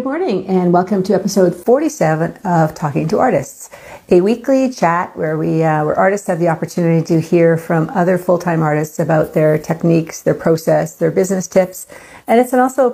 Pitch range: 160-185 Hz